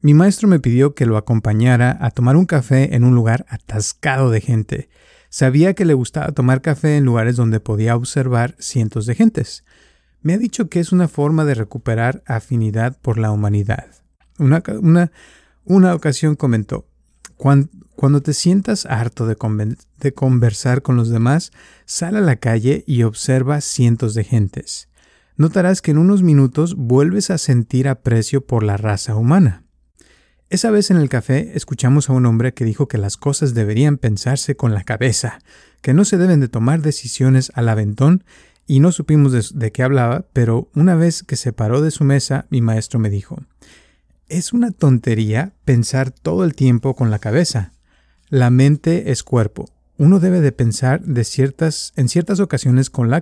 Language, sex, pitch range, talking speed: Spanish, male, 115-155 Hz, 170 wpm